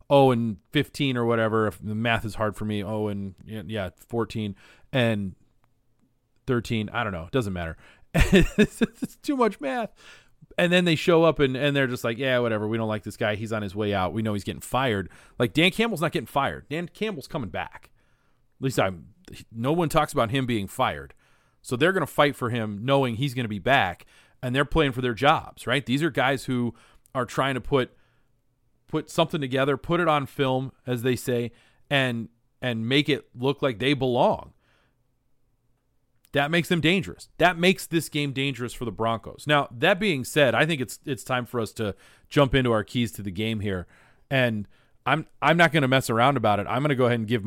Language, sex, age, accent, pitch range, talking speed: English, male, 30-49, American, 115-150 Hz, 210 wpm